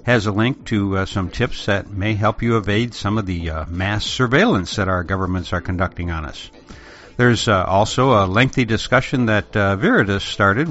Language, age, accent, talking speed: English, 60-79, American, 195 wpm